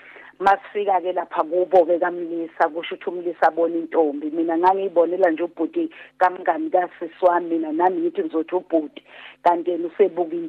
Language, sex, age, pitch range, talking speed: English, female, 40-59, 170-210 Hz, 135 wpm